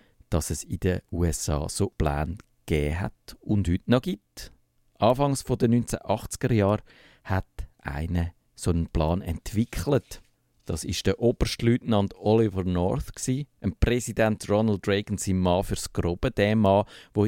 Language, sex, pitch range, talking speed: German, male, 90-115 Hz, 140 wpm